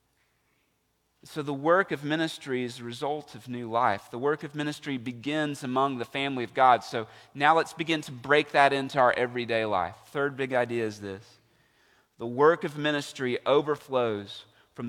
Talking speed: 175 wpm